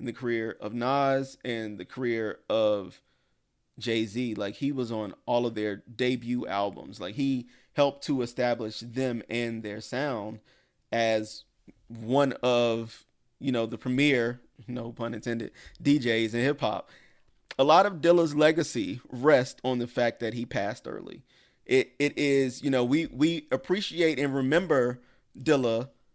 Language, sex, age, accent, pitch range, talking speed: English, male, 30-49, American, 115-140 Hz, 150 wpm